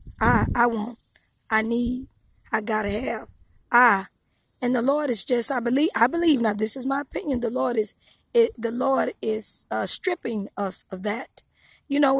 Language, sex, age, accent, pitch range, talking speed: English, female, 20-39, American, 225-275 Hz, 175 wpm